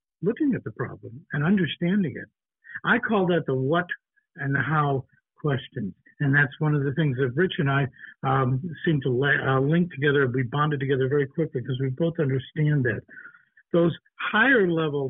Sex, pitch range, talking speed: male, 130-170 Hz, 180 wpm